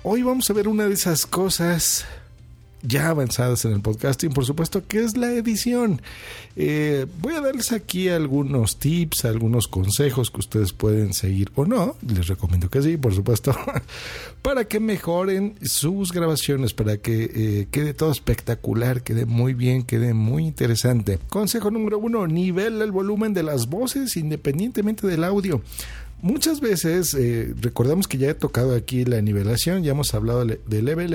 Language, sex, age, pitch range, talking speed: Spanish, male, 50-69, 115-180 Hz, 165 wpm